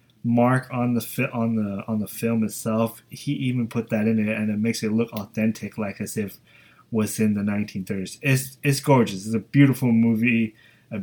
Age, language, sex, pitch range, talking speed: 20-39, English, male, 110-130 Hz, 205 wpm